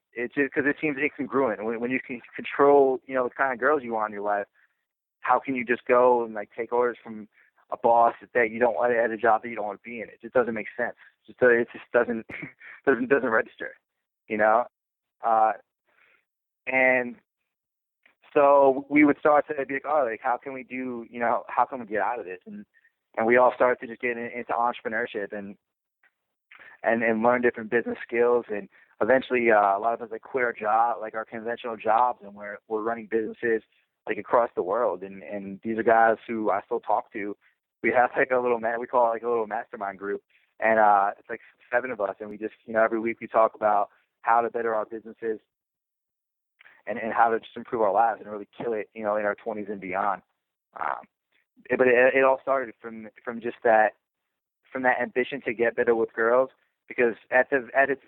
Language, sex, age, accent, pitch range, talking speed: English, male, 20-39, American, 110-125 Hz, 225 wpm